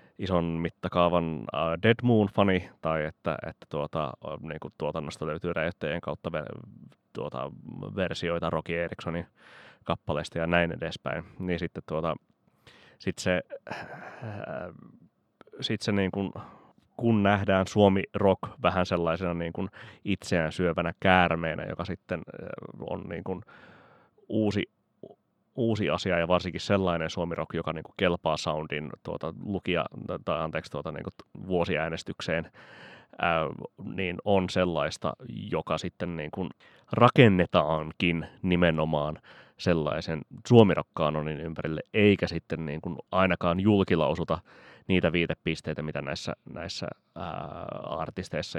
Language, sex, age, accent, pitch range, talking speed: Finnish, male, 30-49, native, 80-100 Hz, 110 wpm